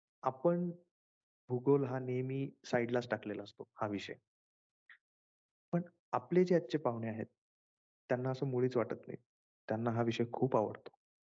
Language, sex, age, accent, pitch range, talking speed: Marathi, male, 30-49, native, 120-135 Hz, 130 wpm